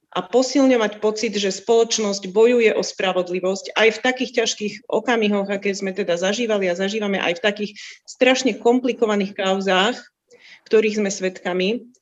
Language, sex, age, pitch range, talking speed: Slovak, female, 30-49, 205-250 Hz, 140 wpm